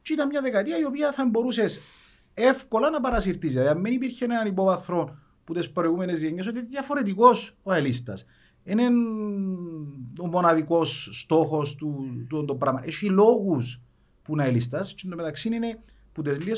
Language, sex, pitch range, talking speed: Greek, male, 140-220 Hz, 155 wpm